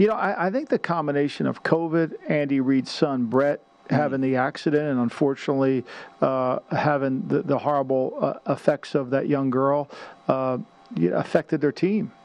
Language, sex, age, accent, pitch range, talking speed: English, male, 50-69, American, 135-155 Hz, 160 wpm